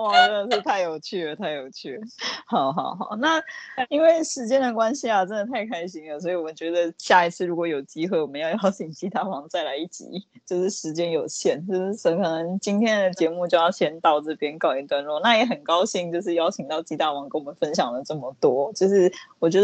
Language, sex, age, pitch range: Chinese, female, 20-39, 170-225 Hz